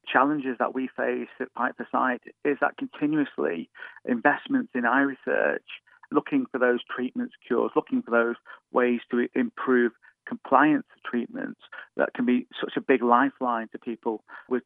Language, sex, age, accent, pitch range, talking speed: English, male, 40-59, British, 120-155 Hz, 150 wpm